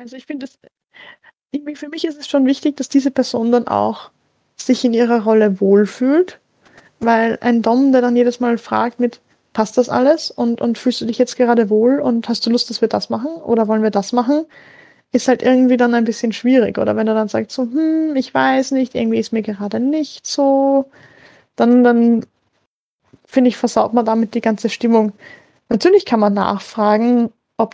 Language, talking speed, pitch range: German, 195 wpm, 220-255 Hz